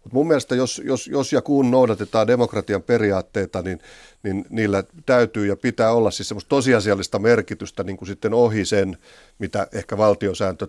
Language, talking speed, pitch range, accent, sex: Finnish, 150 wpm, 100-120 Hz, native, male